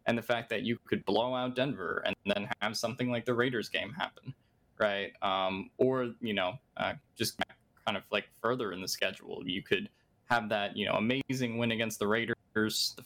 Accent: American